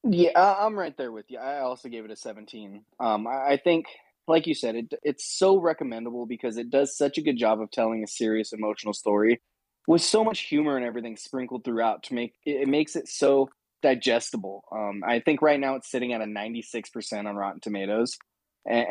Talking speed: 205 wpm